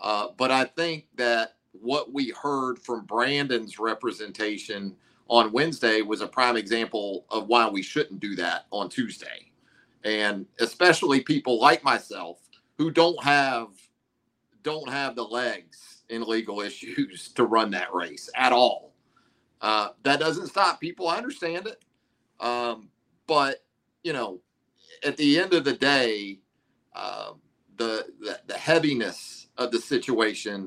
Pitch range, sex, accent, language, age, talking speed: 110-130 Hz, male, American, English, 40-59, 140 wpm